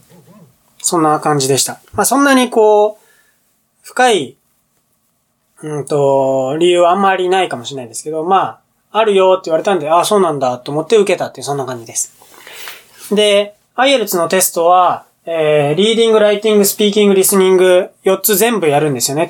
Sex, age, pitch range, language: male, 20-39, 150-215 Hz, Japanese